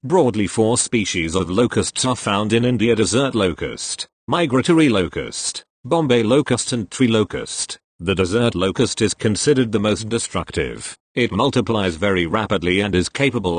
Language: English